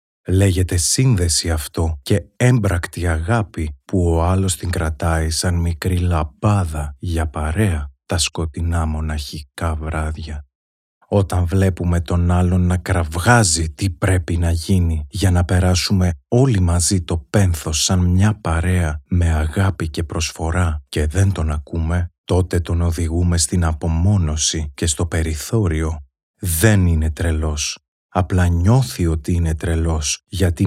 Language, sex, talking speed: Greek, male, 125 wpm